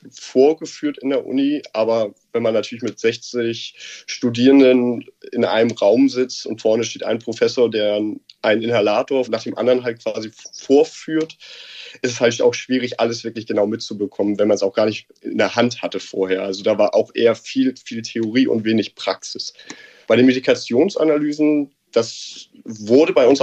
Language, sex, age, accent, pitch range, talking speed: German, male, 30-49, German, 110-135 Hz, 170 wpm